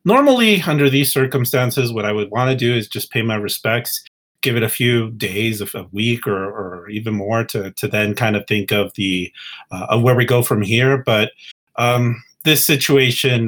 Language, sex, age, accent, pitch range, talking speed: English, male, 30-49, American, 105-135 Hz, 205 wpm